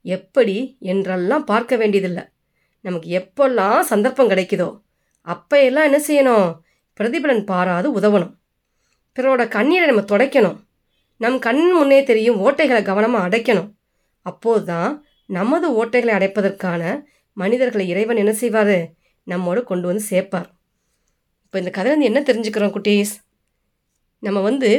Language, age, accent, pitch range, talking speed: Tamil, 30-49, native, 185-255 Hz, 110 wpm